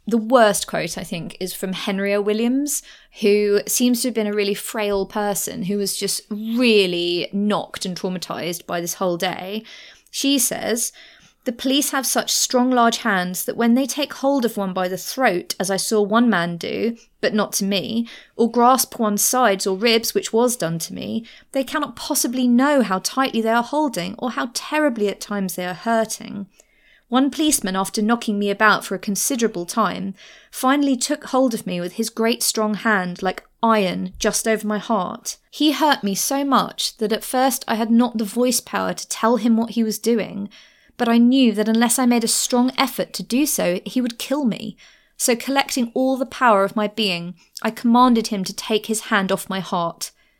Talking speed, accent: 200 wpm, British